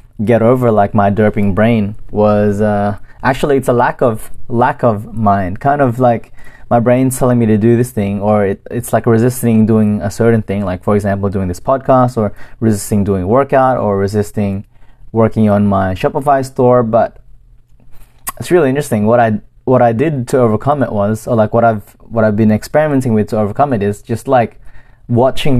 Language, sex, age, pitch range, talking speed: English, male, 20-39, 110-130 Hz, 190 wpm